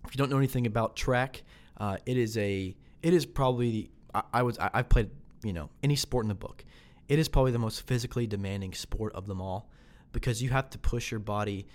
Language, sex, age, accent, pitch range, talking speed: English, male, 20-39, American, 95-120 Hz, 225 wpm